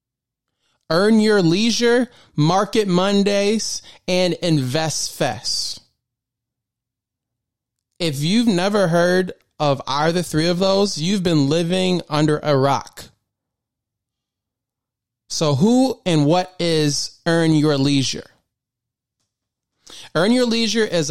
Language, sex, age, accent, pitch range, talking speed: English, male, 20-39, American, 150-185 Hz, 100 wpm